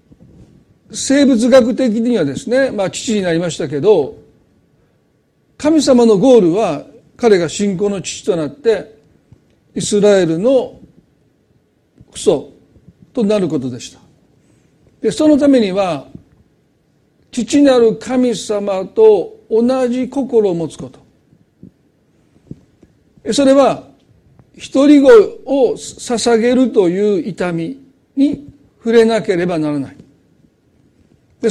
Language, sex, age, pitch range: Japanese, male, 50-69, 170-250 Hz